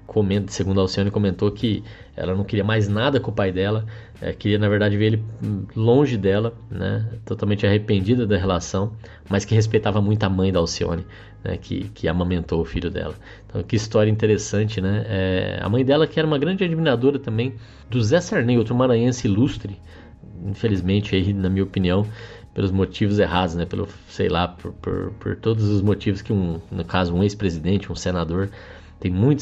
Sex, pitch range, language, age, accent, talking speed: male, 95-110 Hz, Portuguese, 20-39, Brazilian, 185 wpm